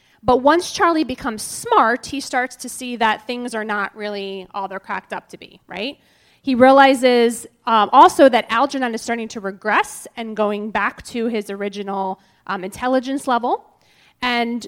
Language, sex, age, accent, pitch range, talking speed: English, female, 30-49, American, 210-255 Hz, 170 wpm